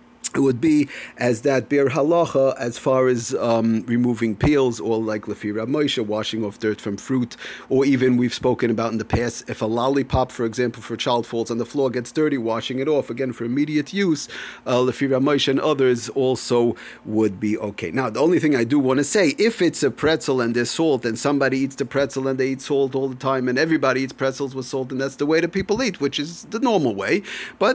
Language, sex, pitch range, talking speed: English, male, 125-170 Hz, 230 wpm